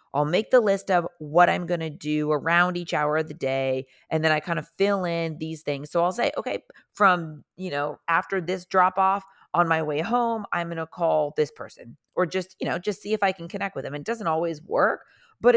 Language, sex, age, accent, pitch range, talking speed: English, female, 30-49, American, 150-195 Hz, 240 wpm